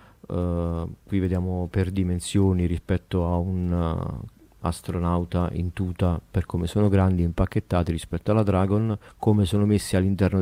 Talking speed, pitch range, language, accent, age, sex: 130 wpm, 90-105 Hz, Italian, native, 40-59, male